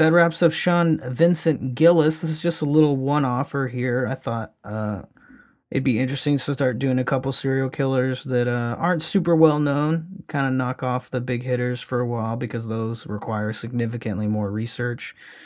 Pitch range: 110-150 Hz